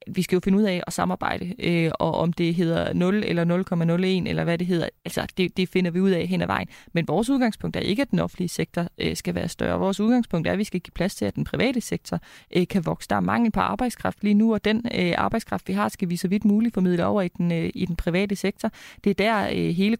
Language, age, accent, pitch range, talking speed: Danish, 20-39, native, 180-225 Hz, 275 wpm